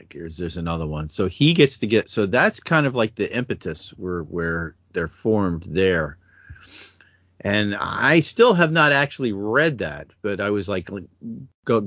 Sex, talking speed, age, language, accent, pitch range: male, 170 wpm, 40-59, English, American, 95-140 Hz